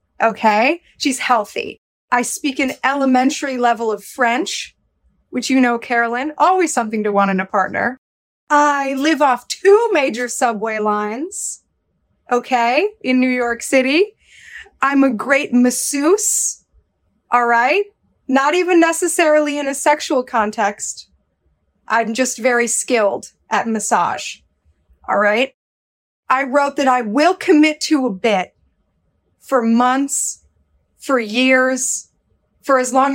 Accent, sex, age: American, female, 30-49